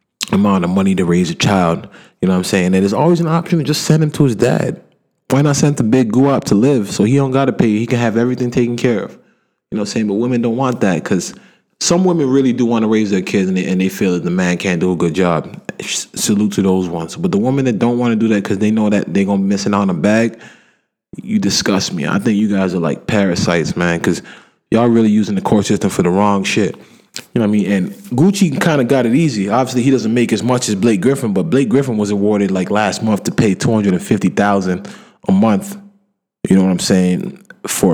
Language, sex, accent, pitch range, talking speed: English, male, American, 95-135 Hz, 270 wpm